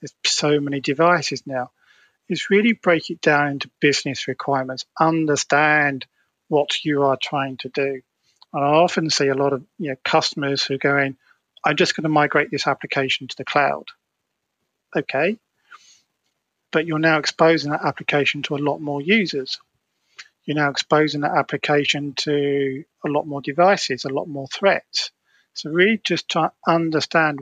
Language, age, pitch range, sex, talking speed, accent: English, 40-59, 140-160 Hz, male, 160 wpm, British